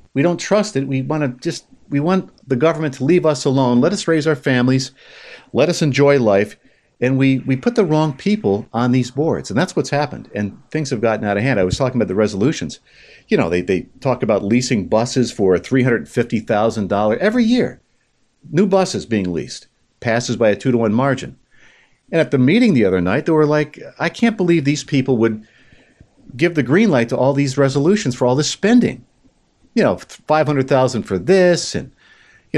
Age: 50-69